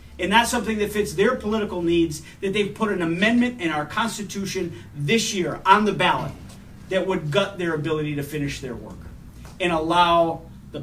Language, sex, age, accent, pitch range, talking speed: English, male, 40-59, American, 135-175 Hz, 185 wpm